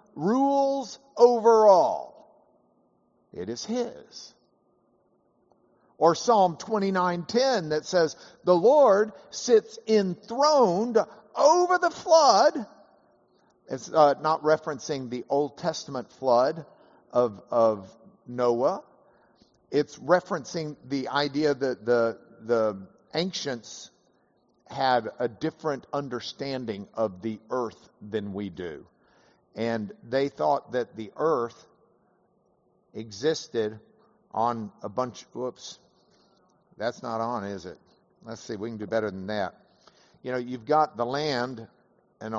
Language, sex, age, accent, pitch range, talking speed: English, male, 50-69, American, 115-180 Hz, 110 wpm